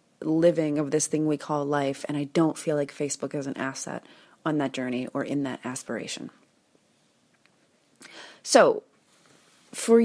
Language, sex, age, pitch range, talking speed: English, female, 30-49, 155-195 Hz, 150 wpm